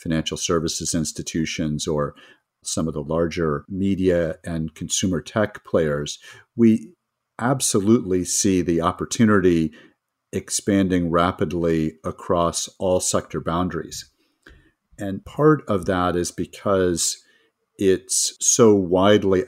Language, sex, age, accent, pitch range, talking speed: English, male, 50-69, American, 80-95 Hz, 100 wpm